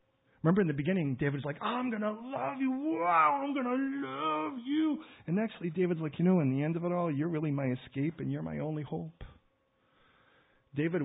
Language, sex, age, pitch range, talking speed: English, male, 40-59, 115-150 Hz, 215 wpm